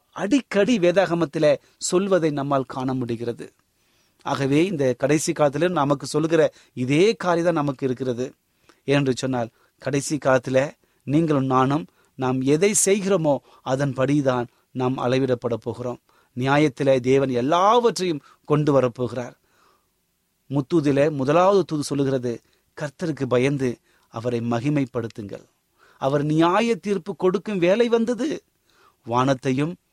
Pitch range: 135-195 Hz